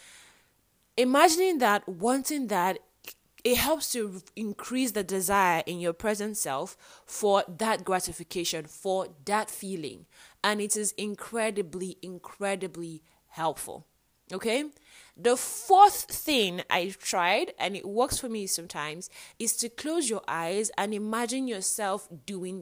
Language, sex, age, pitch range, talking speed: English, female, 20-39, 185-235 Hz, 125 wpm